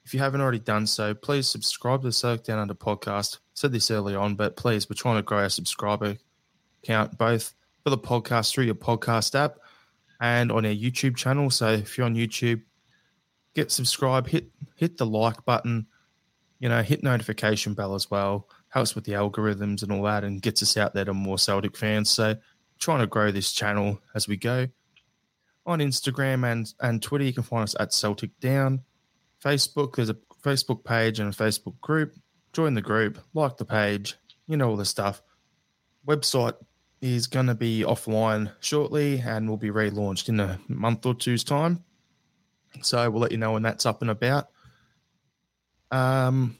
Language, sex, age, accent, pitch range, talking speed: English, male, 20-39, Australian, 110-130 Hz, 185 wpm